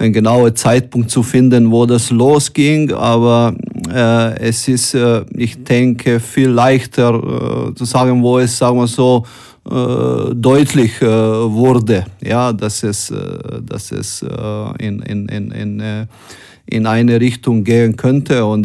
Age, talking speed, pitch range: 30-49, 150 wpm, 115-125 Hz